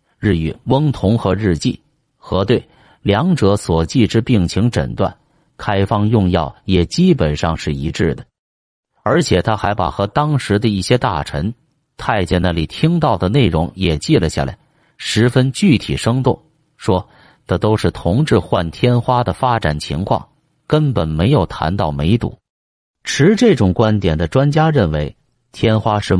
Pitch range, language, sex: 85-125 Hz, Chinese, male